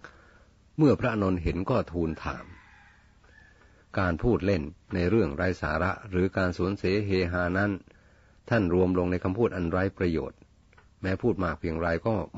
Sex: male